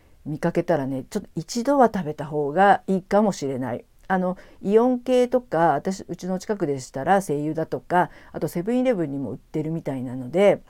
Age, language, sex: 50-69, Japanese, female